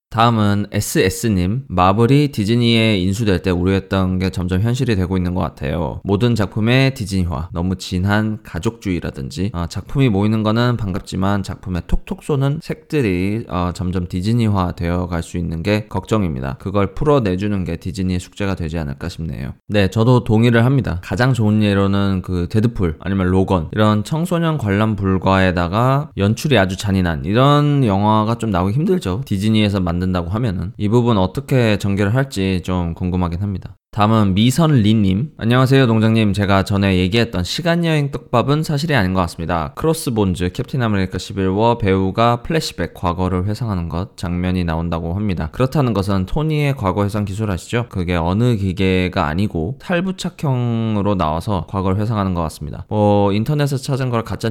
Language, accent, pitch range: Korean, native, 90-115 Hz